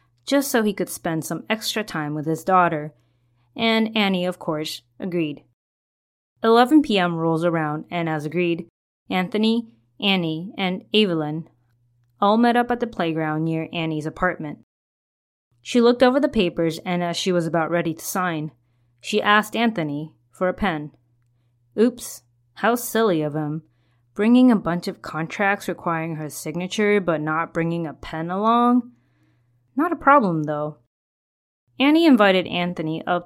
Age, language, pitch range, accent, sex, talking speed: 20-39, English, 150-195 Hz, American, female, 150 wpm